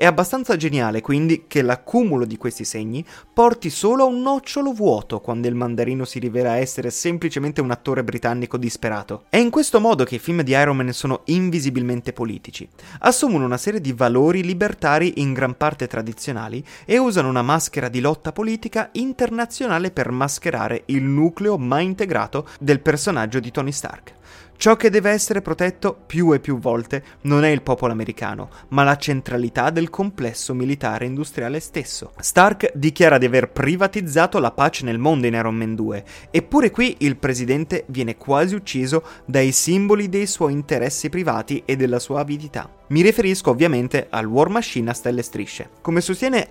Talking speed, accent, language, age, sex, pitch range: 170 wpm, native, Italian, 30-49, male, 125-170 Hz